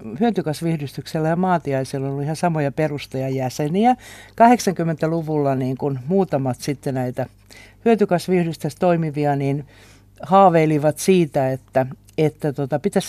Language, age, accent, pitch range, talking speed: Finnish, 60-79, native, 130-180 Hz, 100 wpm